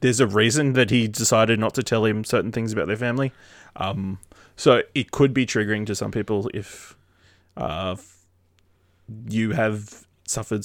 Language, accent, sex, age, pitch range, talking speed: English, Australian, male, 20-39, 95-120 Hz, 165 wpm